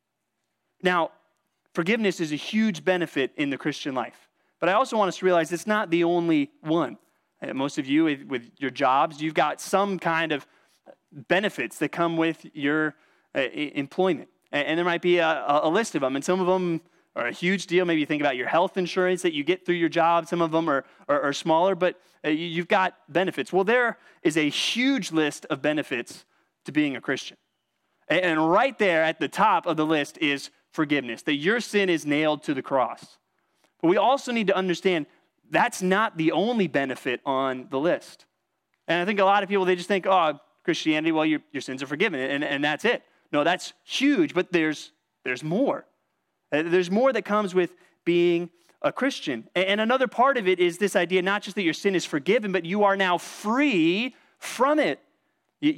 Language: English